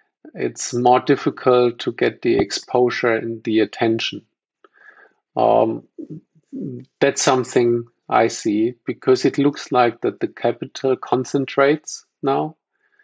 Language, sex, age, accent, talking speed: English, male, 50-69, German, 110 wpm